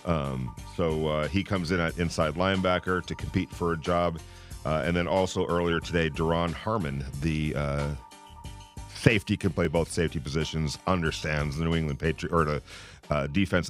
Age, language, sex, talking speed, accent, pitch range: 40-59, English, male, 170 wpm, American, 80-100 Hz